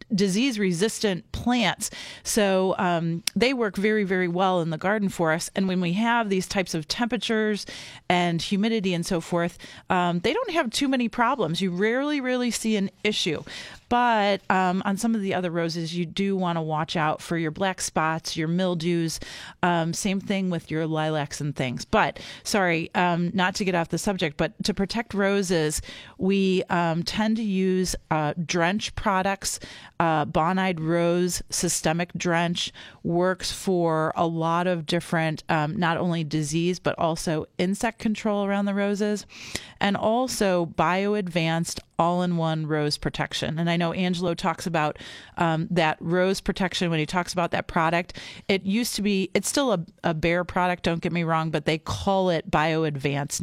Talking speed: 170 wpm